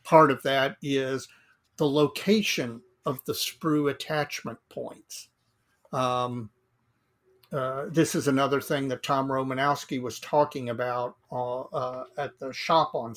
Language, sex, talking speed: English, male, 130 wpm